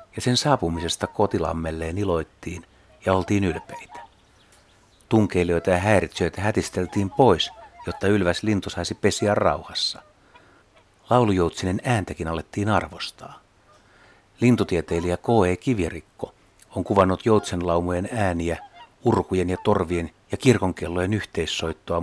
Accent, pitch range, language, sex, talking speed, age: native, 90-145 Hz, Finnish, male, 100 wpm, 60-79